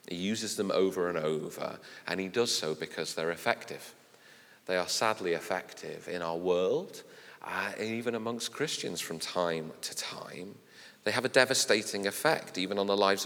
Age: 40-59